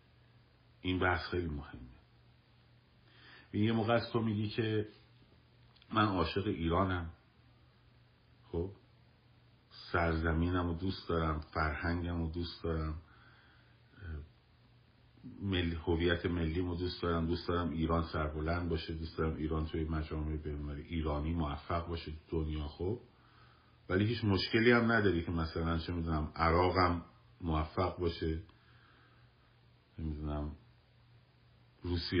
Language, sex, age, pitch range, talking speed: Persian, male, 50-69, 80-115 Hz, 110 wpm